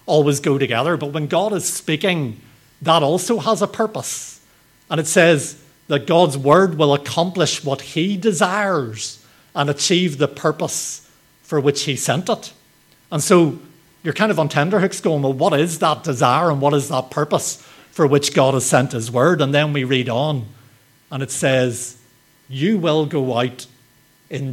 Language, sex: English, male